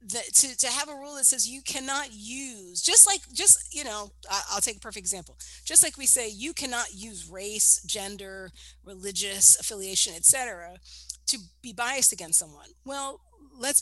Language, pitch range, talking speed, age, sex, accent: English, 215-320 Hz, 175 wpm, 40-59, female, American